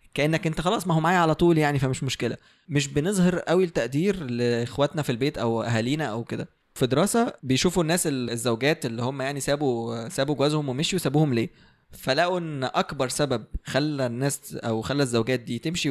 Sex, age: male, 20-39